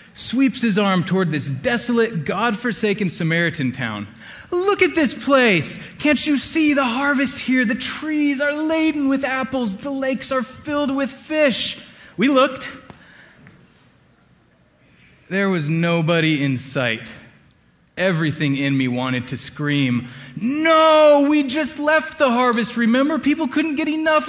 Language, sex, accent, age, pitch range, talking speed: English, male, American, 30-49, 155-260 Hz, 135 wpm